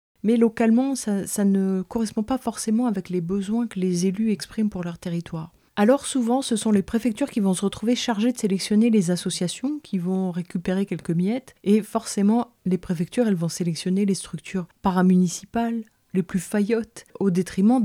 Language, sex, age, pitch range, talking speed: French, female, 30-49, 180-220 Hz, 180 wpm